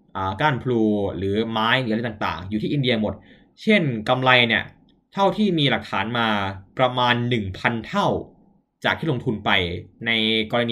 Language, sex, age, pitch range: Thai, male, 10-29, 110-145 Hz